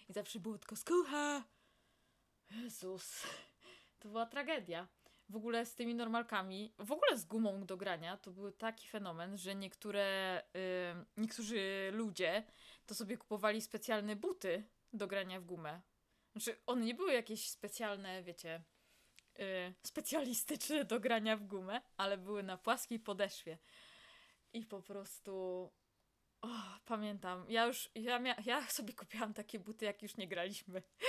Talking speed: 135 wpm